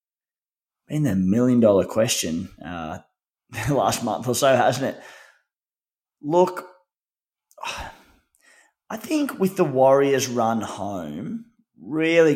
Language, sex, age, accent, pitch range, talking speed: English, male, 20-39, Australian, 110-150 Hz, 100 wpm